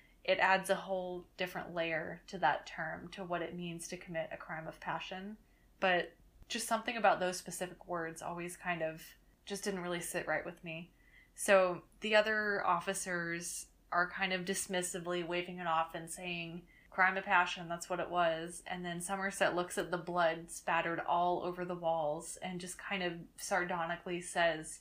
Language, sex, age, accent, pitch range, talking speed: English, female, 20-39, American, 170-190 Hz, 180 wpm